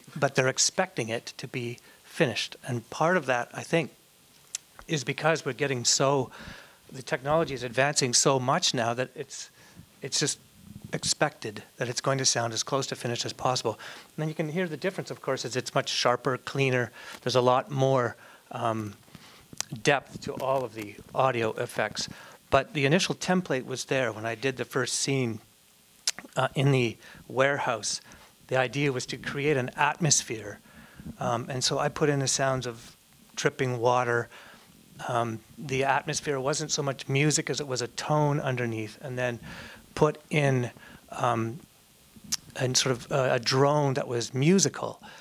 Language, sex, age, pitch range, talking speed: English, male, 40-59, 125-145 Hz, 170 wpm